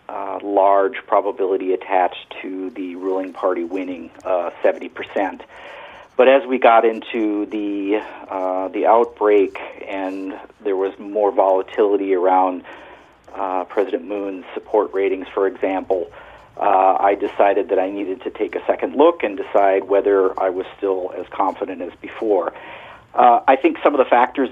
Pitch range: 95-140 Hz